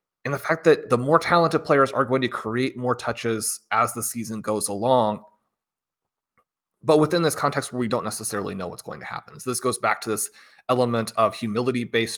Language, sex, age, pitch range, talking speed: English, male, 30-49, 110-130 Hz, 200 wpm